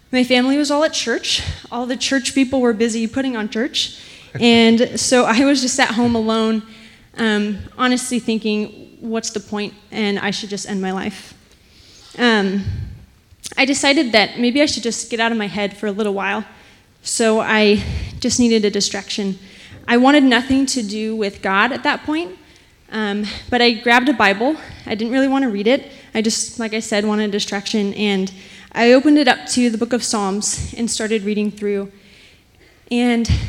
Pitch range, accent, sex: 205-250 Hz, American, female